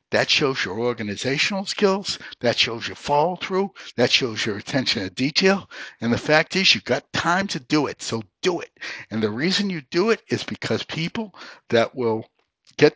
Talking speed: 185 wpm